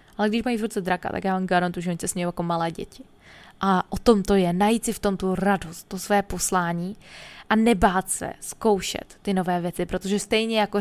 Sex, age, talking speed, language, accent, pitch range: female, 20-39, 220 wpm, Czech, native, 180-210 Hz